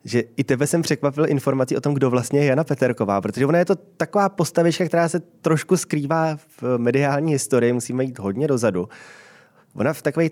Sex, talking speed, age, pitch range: male, 190 wpm, 20-39, 120-150 Hz